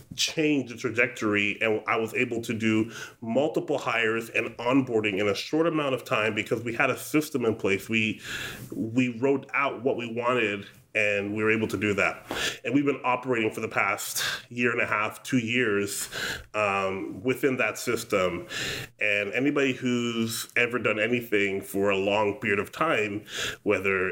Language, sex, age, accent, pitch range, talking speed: English, male, 30-49, American, 105-130 Hz, 175 wpm